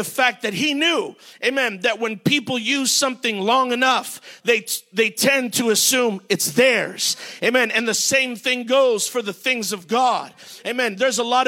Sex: male